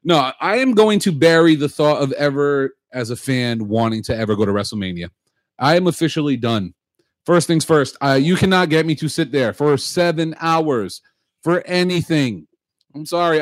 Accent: American